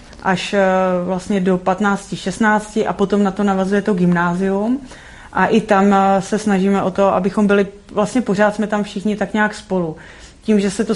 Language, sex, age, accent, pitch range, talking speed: Czech, female, 30-49, native, 190-205 Hz, 175 wpm